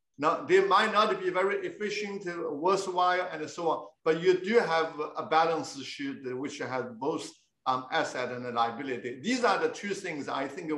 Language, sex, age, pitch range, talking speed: English, male, 50-69, 140-190 Hz, 175 wpm